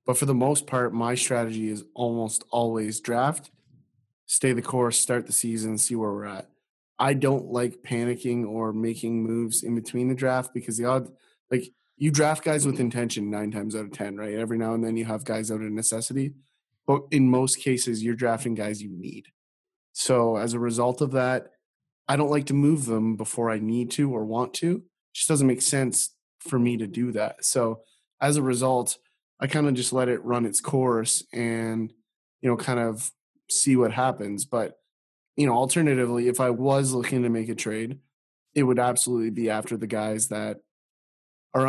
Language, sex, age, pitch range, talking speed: English, male, 20-39, 110-130 Hz, 195 wpm